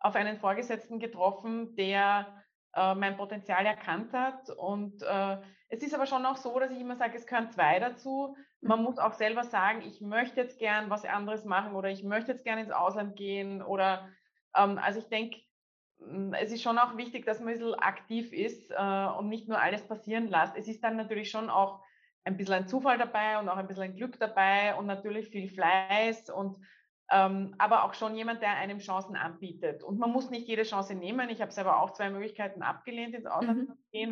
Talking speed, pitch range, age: 210 wpm, 195-235 Hz, 20-39